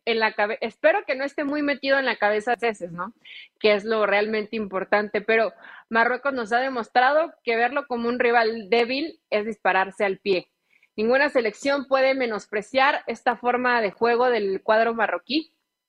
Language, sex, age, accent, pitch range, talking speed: Spanish, female, 30-49, Mexican, 225-285 Hz, 175 wpm